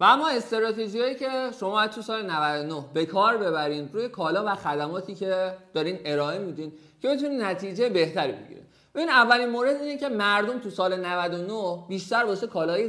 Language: Persian